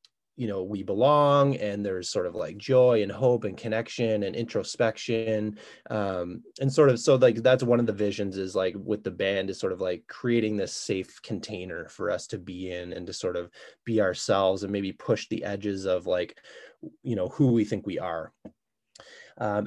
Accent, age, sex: American, 20-39, male